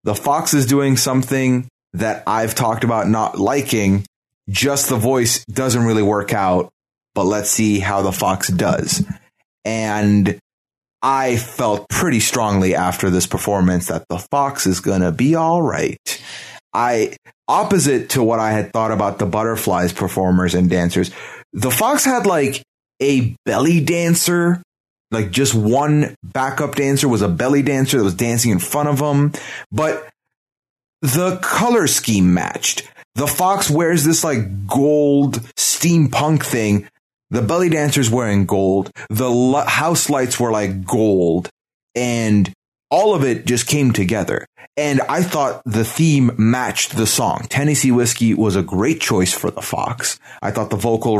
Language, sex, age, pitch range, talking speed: English, male, 30-49, 105-140 Hz, 155 wpm